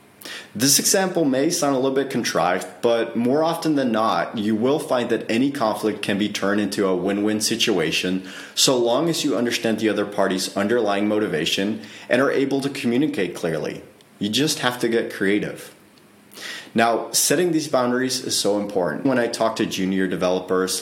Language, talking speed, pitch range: English, 175 wpm, 100-130 Hz